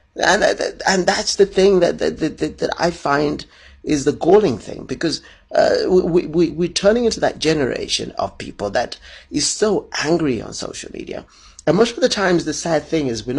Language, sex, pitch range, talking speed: English, male, 130-190 Hz, 195 wpm